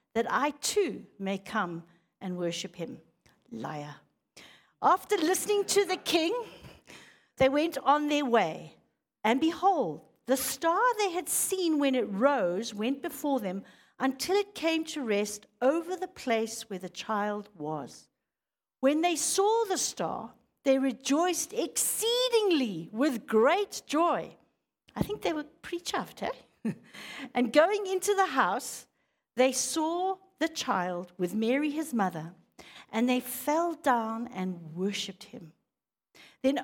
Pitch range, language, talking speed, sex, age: 205-320 Hz, English, 135 wpm, female, 60-79